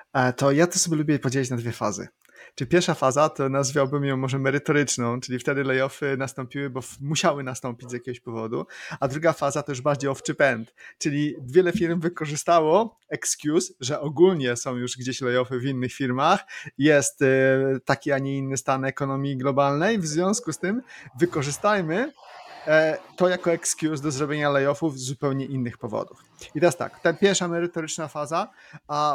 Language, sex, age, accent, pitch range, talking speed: Polish, male, 30-49, native, 135-170 Hz, 165 wpm